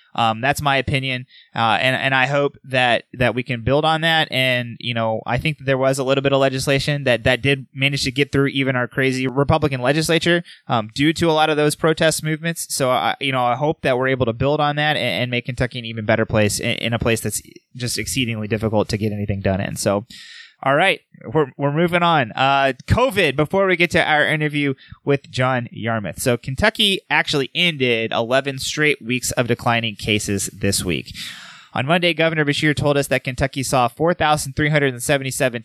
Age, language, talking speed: 20-39, English, 210 wpm